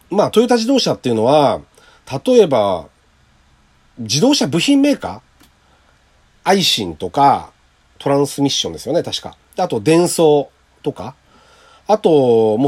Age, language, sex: 40-59, Japanese, male